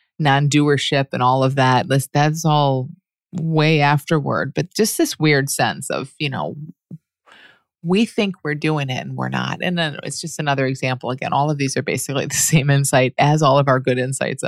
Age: 30-49